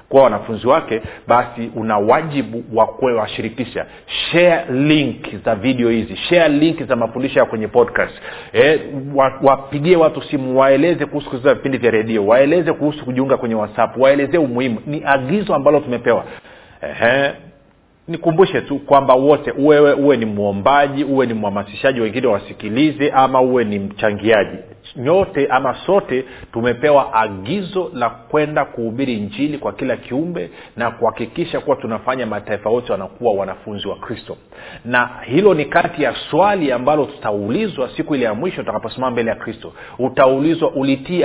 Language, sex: Swahili, male